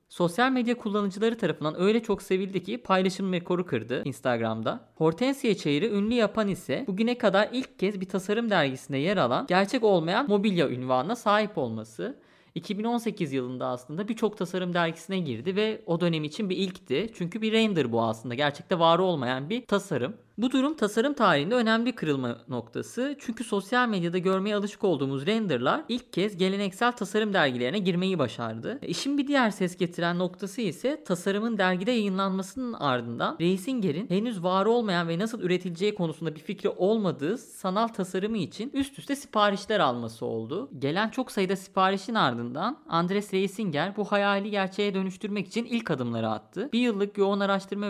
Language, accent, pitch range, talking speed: Turkish, native, 170-215 Hz, 160 wpm